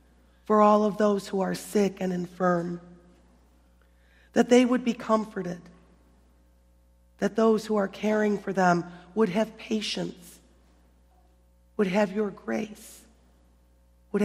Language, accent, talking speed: English, American, 120 wpm